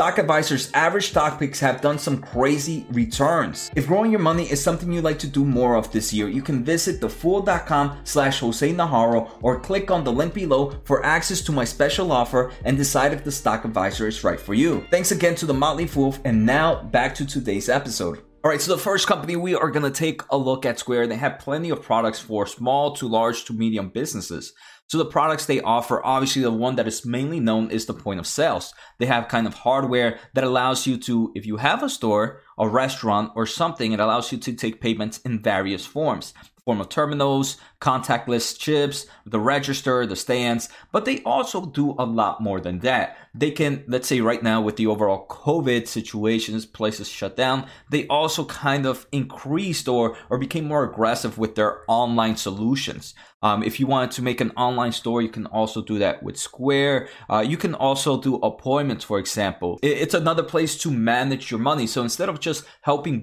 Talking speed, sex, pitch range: 205 wpm, male, 115-145 Hz